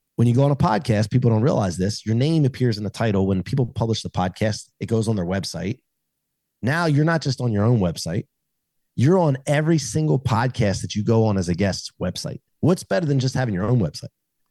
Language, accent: English, American